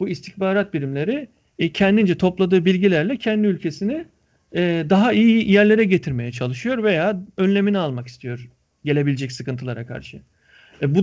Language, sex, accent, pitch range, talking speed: Turkish, male, native, 145-190 Hz, 115 wpm